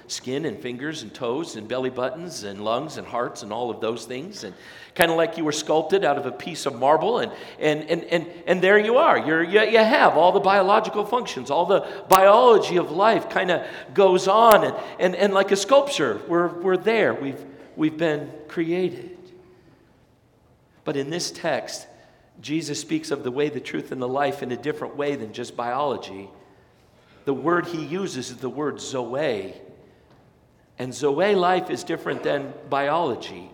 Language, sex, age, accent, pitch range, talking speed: English, male, 50-69, American, 120-175 Hz, 185 wpm